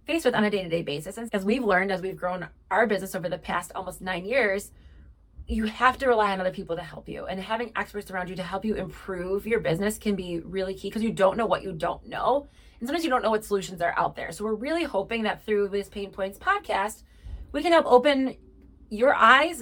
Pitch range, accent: 190-235 Hz, American